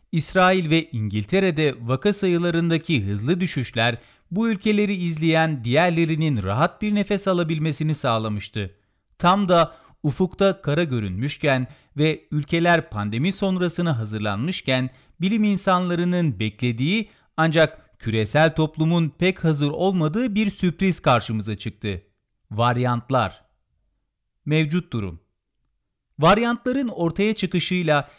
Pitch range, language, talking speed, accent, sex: 120-180 Hz, Turkish, 95 wpm, native, male